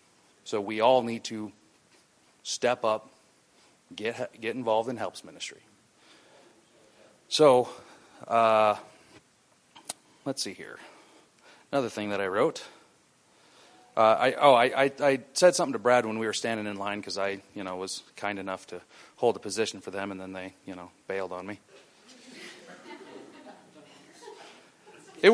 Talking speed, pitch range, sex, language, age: 145 wpm, 105-150 Hz, male, English, 30-49